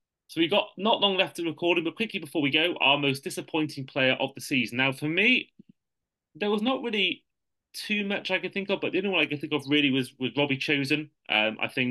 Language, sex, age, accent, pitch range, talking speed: English, male, 30-49, British, 115-150 Hz, 245 wpm